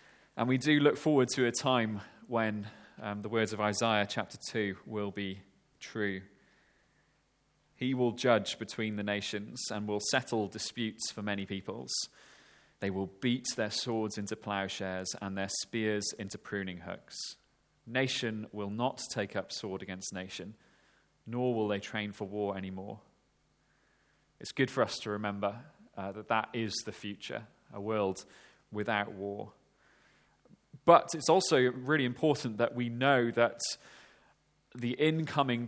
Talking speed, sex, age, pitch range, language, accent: 145 wpm, male, 30-49, 105-130 Hz, English, British